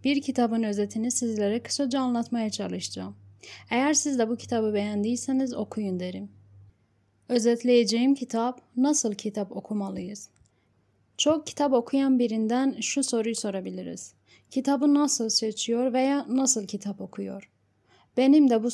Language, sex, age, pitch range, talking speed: Turkish, female, 10-29, 190-245 Hz, 120 wpm